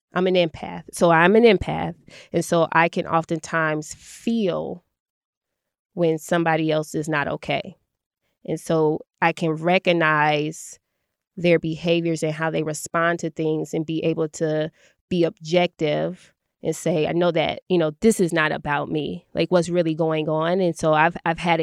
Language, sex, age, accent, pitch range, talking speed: English, female, 20-39, American, 160-180 Hz, 165 wpm